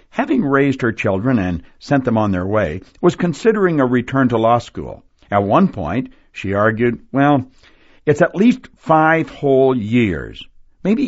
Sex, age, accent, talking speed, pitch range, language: male, 60-79, American, 160 wpm, 105-150 Hz, English